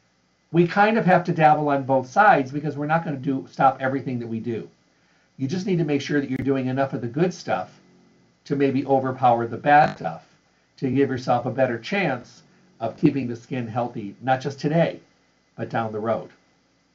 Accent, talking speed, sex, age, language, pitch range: American, 205 wpm, male, 50-69, English, 120-140 Hz